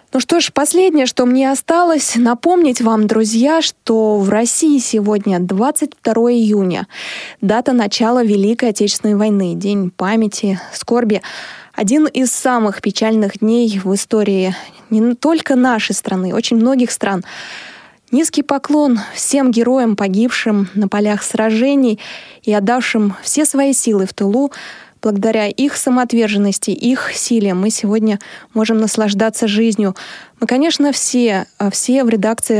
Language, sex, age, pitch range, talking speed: Russian, female, 20-39, 205-250 Hz, 125 wpm